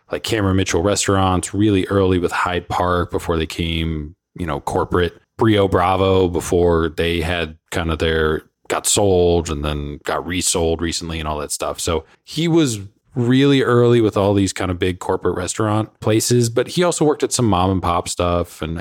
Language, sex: English, male